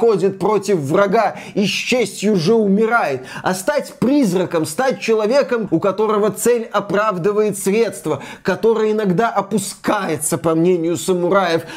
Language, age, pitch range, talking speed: Russian, 20-39, 190-245 Hz, 115 wpm